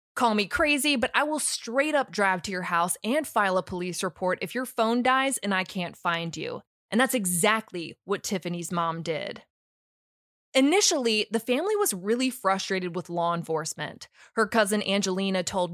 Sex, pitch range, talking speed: female, 190-250 Hz, 175 wpm